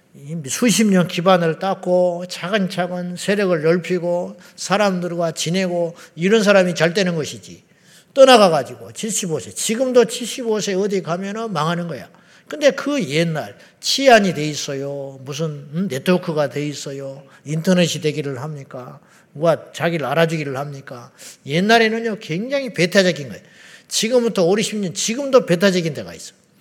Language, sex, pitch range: Korean, male, 165-225 Hz